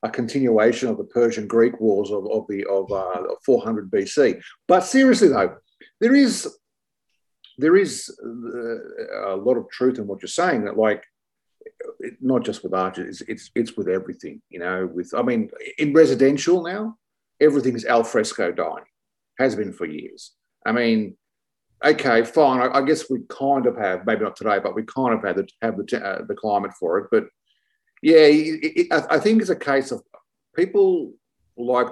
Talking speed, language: 185 wpm, English